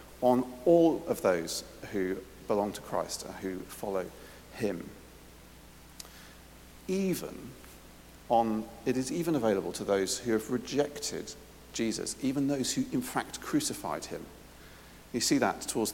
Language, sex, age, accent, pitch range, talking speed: English, male, 50-69, British, 95-135 Hz, 130 wpm